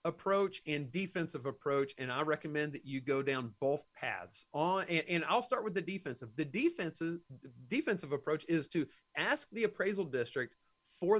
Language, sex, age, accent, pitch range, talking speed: English, male, 40-59, American, 150-190 Hz, 170 wpm